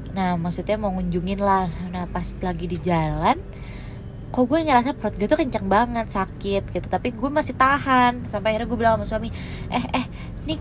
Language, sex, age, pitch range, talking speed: Indonesian, female, 20-39, 180-235 Hz, 185 wpm